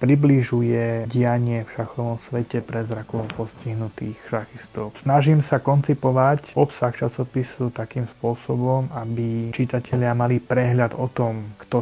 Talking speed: 115 wpm